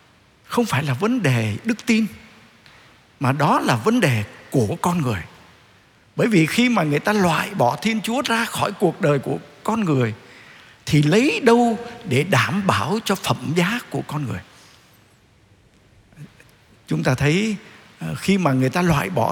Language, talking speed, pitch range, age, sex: Vietnamese, 165 wpm, 130-210 Hz, 60-79, male